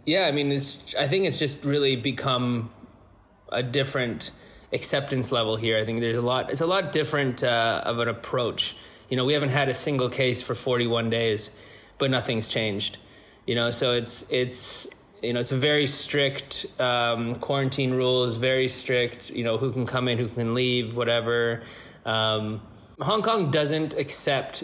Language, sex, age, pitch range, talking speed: English, male, 20-39, 115-135 Hz, 180 wpm